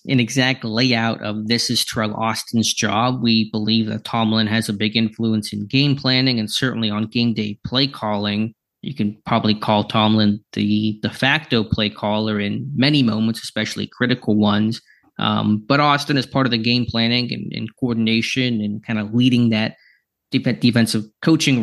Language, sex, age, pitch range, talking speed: English, male, 20-39, 110-120 Hz, 170 wpm